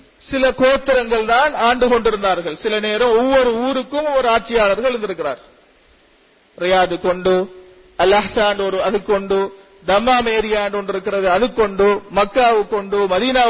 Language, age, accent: English, 40-59, Indian